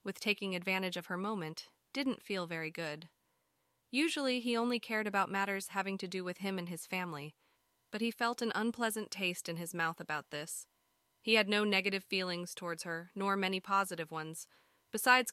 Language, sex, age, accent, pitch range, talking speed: English, female, 20-39, American, 180-220 Hz, 185 wpm